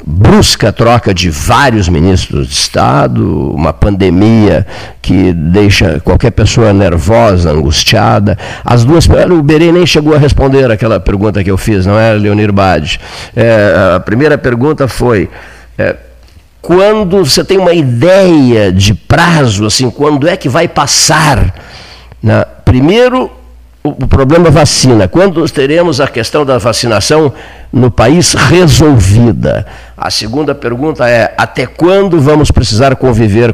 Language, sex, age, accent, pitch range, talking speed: Portuguese, male, 60-79, Brazilian, 100-140 Hz, 130 wpm